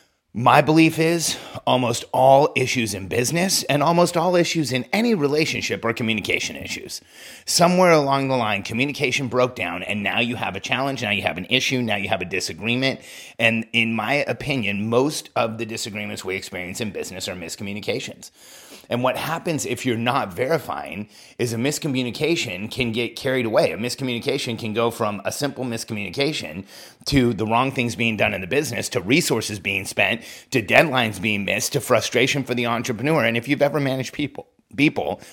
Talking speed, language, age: 180 wpm, English, 30-49